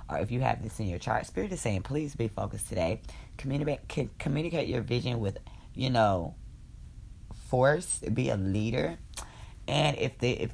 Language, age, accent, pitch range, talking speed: English, 20-39, American, 95-125 Hz, 170 wpm